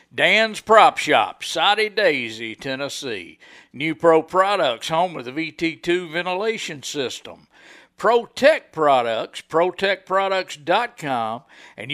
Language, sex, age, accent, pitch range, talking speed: English, male, 50-69, American, 155-205 Hz, 100 wpm